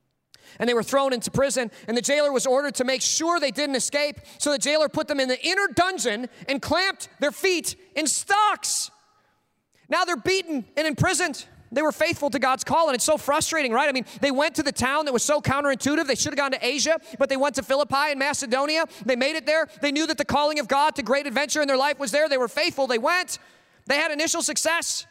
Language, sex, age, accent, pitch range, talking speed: English, male, 30-49, American, 220-295 Hz, 240 wpm